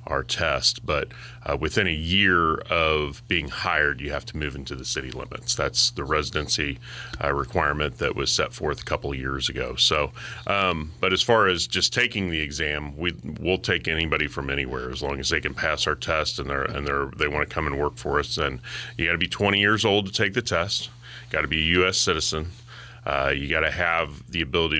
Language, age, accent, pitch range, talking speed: English, 30-49, American, 75-95 Hz, 230 wpm